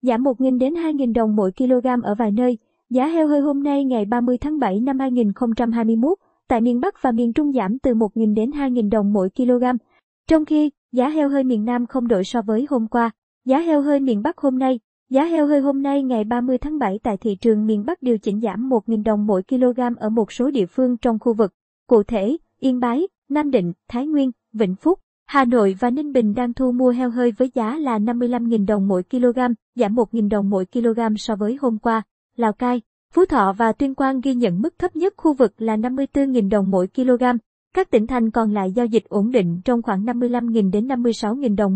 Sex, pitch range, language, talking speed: male, 225-265 Hz, Vietnamese, 220 wpm